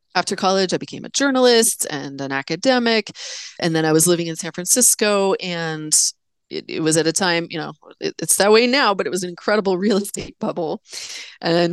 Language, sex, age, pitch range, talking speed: English, female, 30-49, 160-225 Hz, 205 wpm